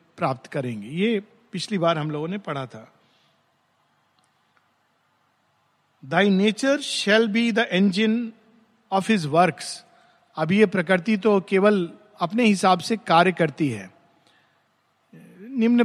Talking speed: 115 wpm